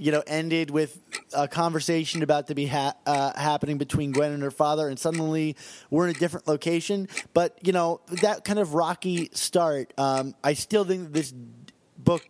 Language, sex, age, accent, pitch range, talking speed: English, male, 30-49, American, 140-170 Hz, 190 wpm